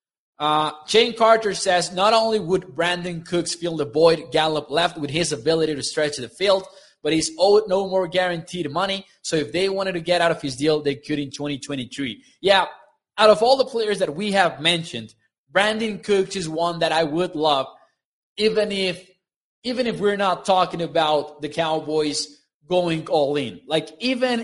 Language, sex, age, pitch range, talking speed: English, male, 20-39, 150-195 Hz, 185 wpm